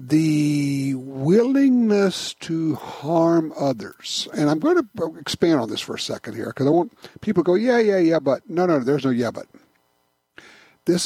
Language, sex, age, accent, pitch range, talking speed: English, male, 60-79, American, 115-160 Hz, 185 wpm